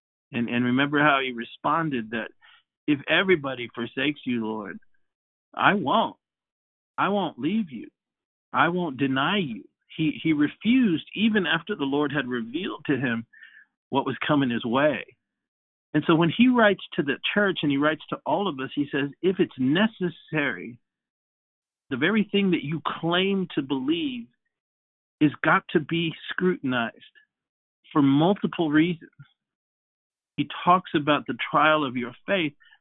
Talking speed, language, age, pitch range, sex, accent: 150 wpm, English, 50-69, 130-180 Hz, male, American